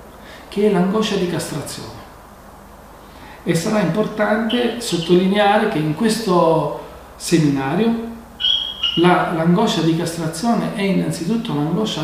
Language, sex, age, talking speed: Italian, male, 40-59, 95 wpm